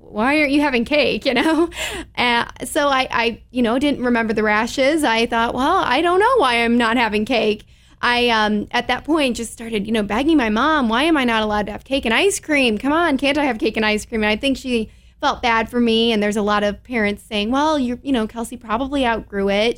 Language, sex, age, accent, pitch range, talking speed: English, female, 20-39, American, 215-265 Hz, 250 wpm